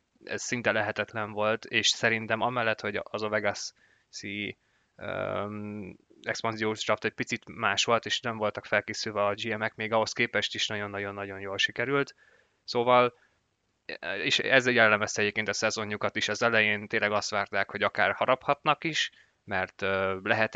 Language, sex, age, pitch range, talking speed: Hungarian, male, 20-39, 105-115 Hz, 150 wpm